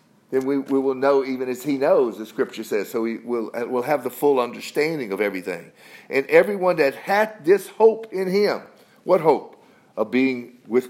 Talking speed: 195 wpm